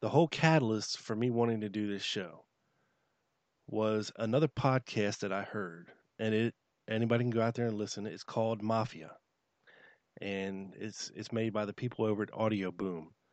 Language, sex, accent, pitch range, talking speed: English, male, American, 105-120 Hz, 175 wpm